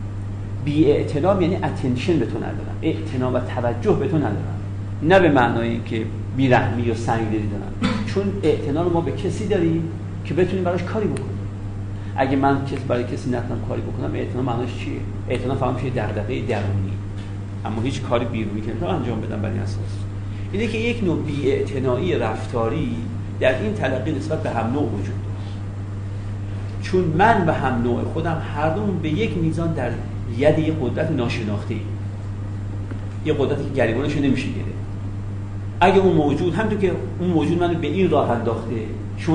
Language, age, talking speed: Persian, 40-59, 165 wpm